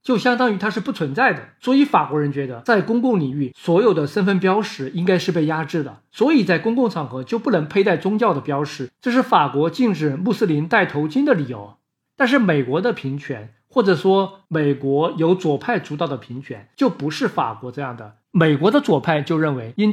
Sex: male